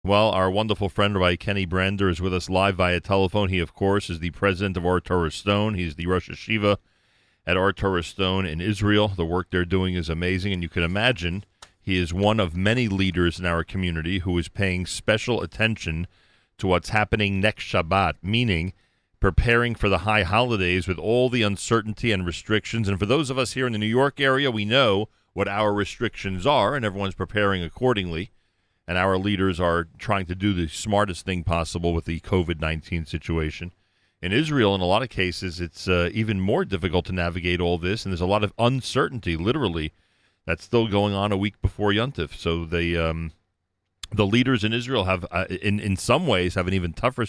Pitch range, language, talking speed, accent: 90-110 Hz, English, 200 wpm, American